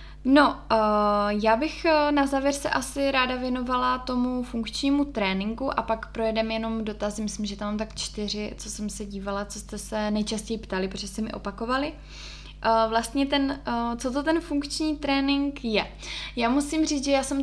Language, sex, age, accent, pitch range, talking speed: Czech, female, 20-39, native, 225-275 Hz, 170 wpm